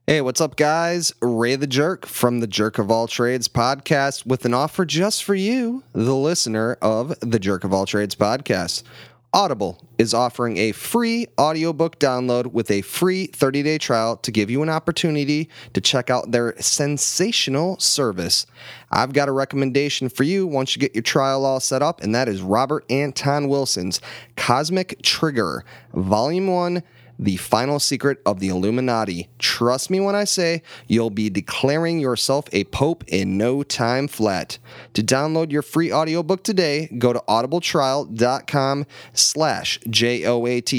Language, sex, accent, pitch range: English, male, American, 115-155 Hz